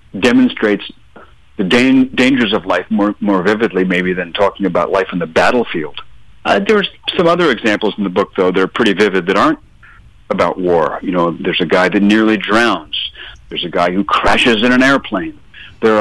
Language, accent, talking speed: English, American, 185 wpm